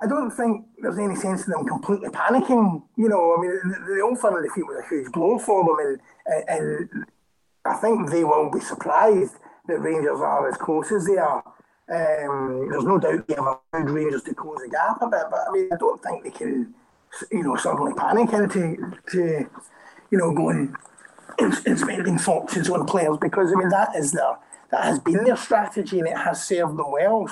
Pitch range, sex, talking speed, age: 170-235 Hz, male, 210 wpm, 30-49